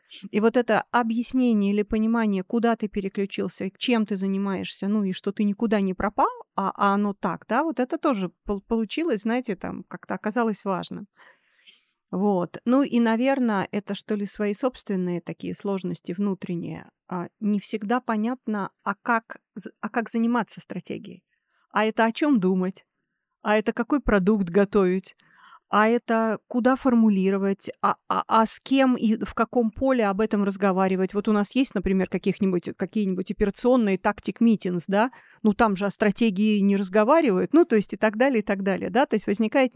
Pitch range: 195-230 Hz